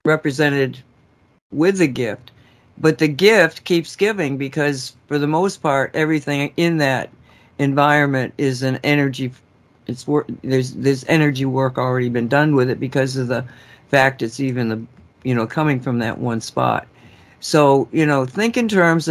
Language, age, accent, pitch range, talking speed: English, 60-79, American, 135-165 Hz, 160 wpm